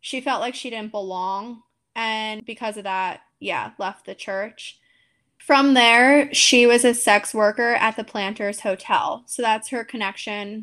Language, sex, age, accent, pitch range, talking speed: English, female, 10-29, American, 210-240 Hz, 165 wpm